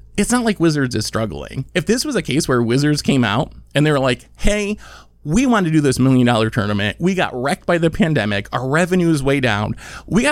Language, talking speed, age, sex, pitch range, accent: English, 240 wpm, 20-39, male, 125-175 Hz, American